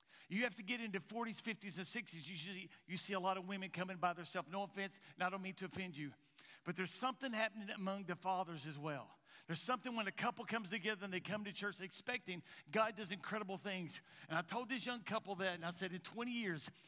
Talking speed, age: 240 wpm, 50-69